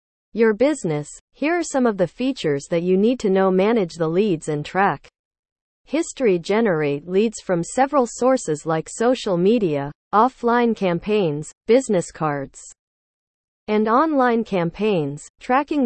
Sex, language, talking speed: female, English, 130 wpm